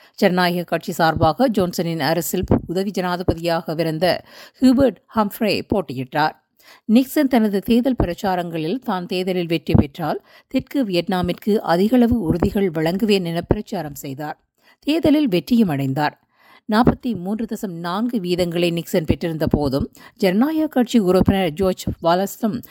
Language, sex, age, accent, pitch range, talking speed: Tamil, female, 50-69, native, 165-220 Hz, 115 wpm